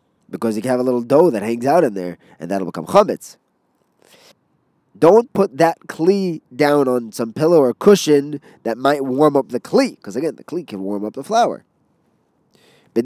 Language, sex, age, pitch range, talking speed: English, male, 20-39, 110-180 Hz, 195 wpm